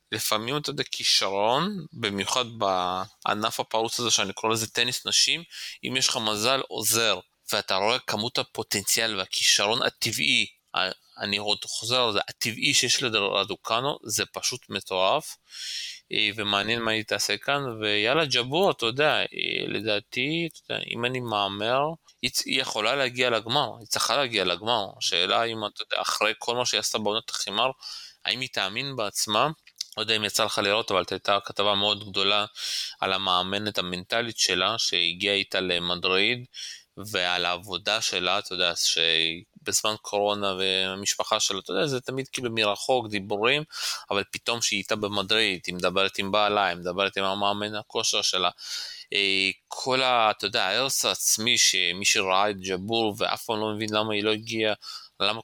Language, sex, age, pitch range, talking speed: Hebrew, male, 20-39, 100-120 Hz, 150 wpm